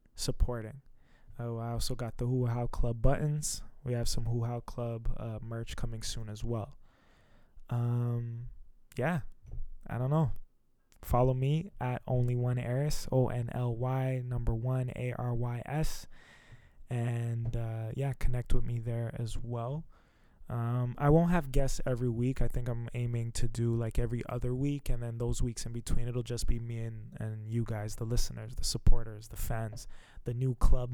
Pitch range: 115-125 Hz